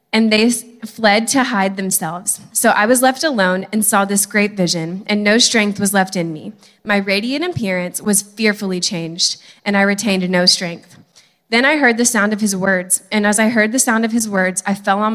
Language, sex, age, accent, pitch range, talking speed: English, female, 20-39, American, 190-225 Hz, 215 wpm